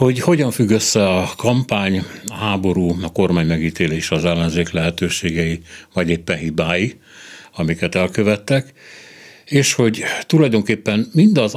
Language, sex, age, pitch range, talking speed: Hungarian, male, 60-79, 85-110 Hz, 120 wpm